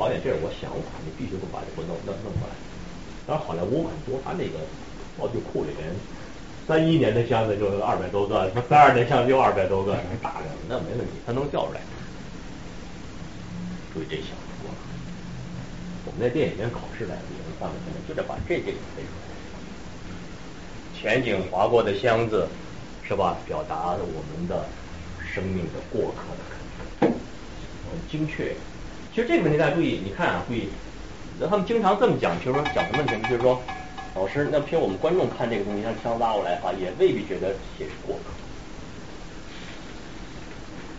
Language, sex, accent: Chinese, male, native